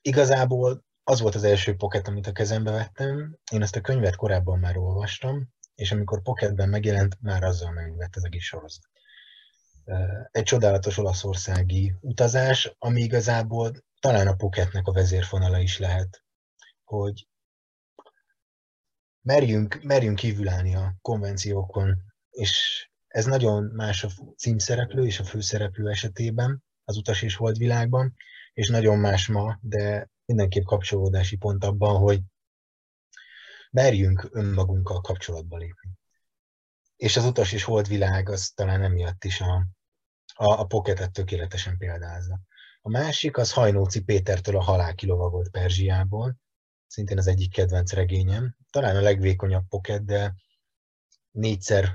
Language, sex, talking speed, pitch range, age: Hungarian, male, 125 wpm, 95-115 Hz, 30-49